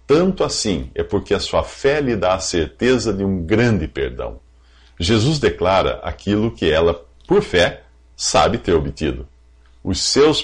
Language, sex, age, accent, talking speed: English, male, 50-69, Brazilian, 155 wpm